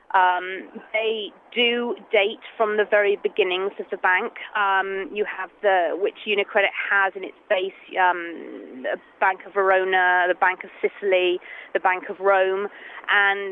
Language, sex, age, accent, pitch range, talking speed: English, female, 30-49, British, 205-245 Hz, 155 wpm